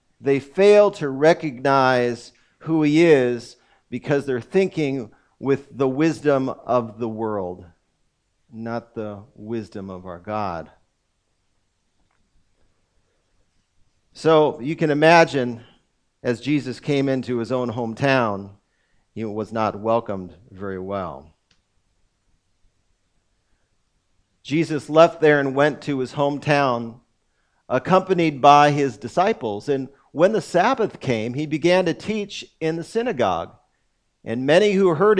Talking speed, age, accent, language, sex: 115 wpm, 50-69, American, English, male